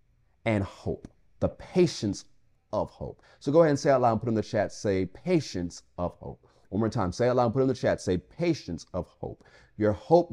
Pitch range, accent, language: 100-140 Hz, American, English